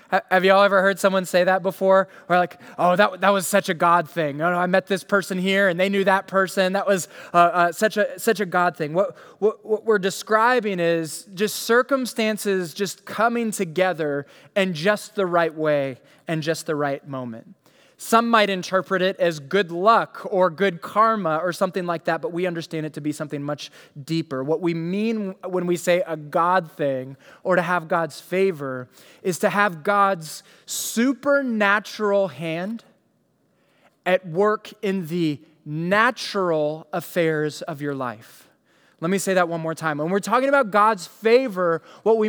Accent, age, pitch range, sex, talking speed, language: American, 20-39, 170-215 Hz, male, 180 wpm, English